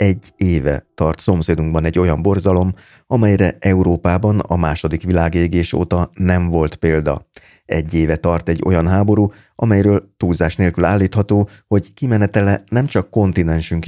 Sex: male